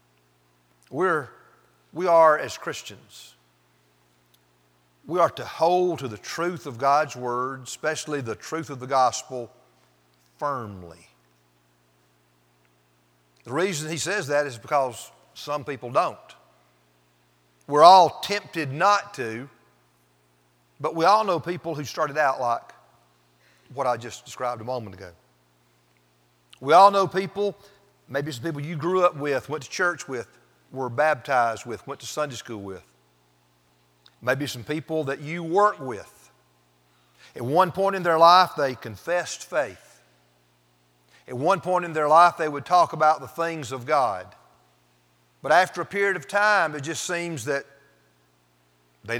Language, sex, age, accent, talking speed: English, male, 50-69, American, 145 wpm